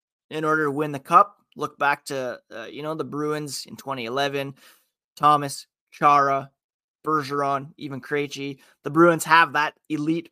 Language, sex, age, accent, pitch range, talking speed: English, male, 20-39, American, 135-160 Hz, 150 wpm